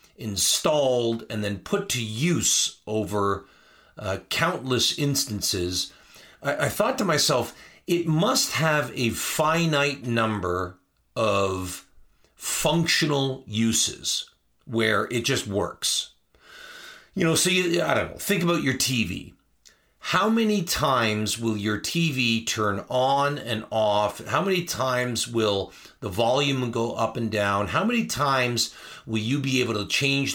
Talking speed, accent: 135 wpm, American